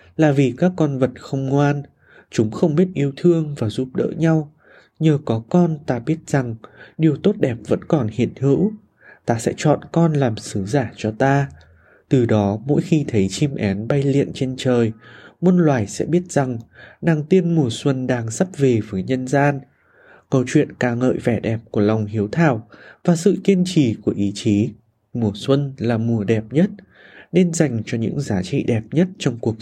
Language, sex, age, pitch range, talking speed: Vietnamese, male, 20-39, 115-160 Hz, 195 wpm